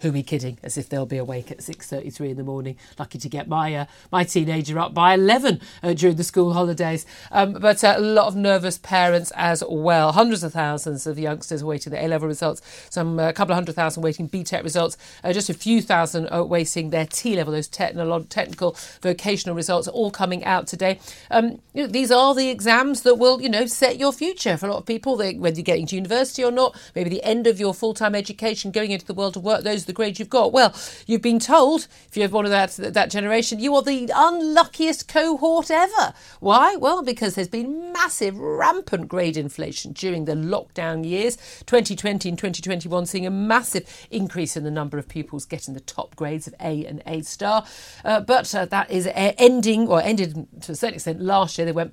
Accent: British